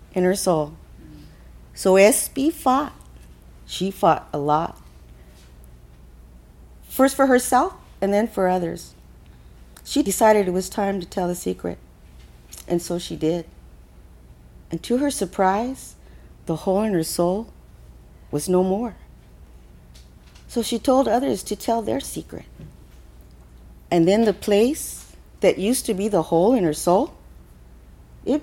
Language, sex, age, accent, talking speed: English, female, 40-59, American, 135 wpm